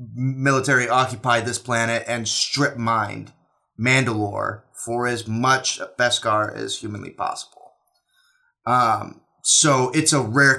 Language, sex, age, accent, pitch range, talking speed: English, male, 20-39, American, 115-135 Hz, 100 wpm